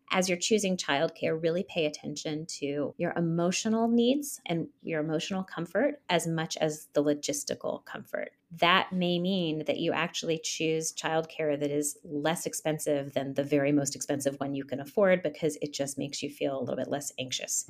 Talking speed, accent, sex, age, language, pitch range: 185 wpm, American, female, 30-49, English, 150-180 Hz